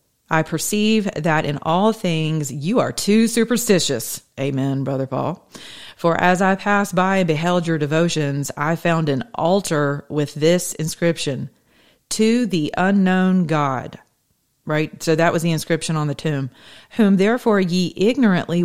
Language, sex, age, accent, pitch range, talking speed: English, female, 40-59, American, 150-185 Hz, 150 wpm